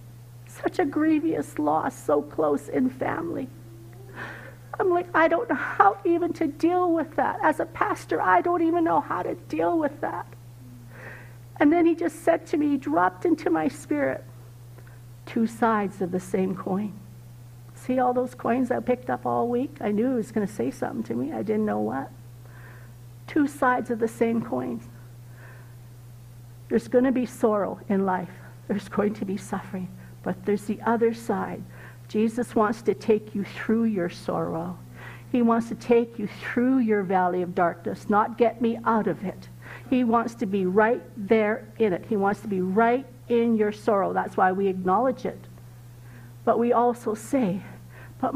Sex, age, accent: female, 60-79, American